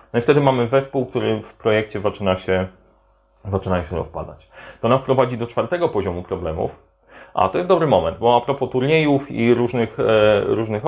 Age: 30-49